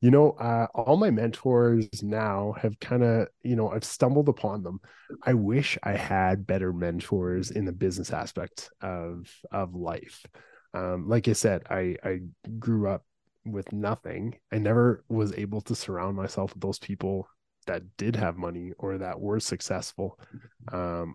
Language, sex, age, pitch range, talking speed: English, male, 20-39, 90-115 Hz, 165 wpm